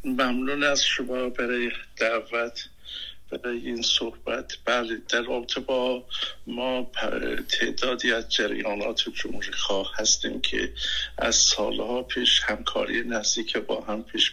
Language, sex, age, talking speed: English, male, 60-79, 115 wpm